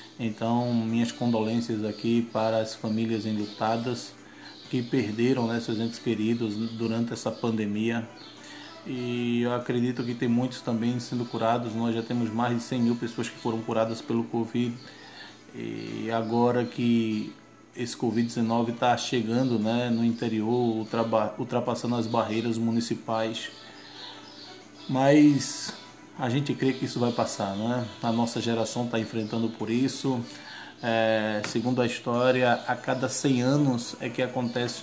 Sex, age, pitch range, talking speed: male, 20-39, 115-125 Hz, 135 wpm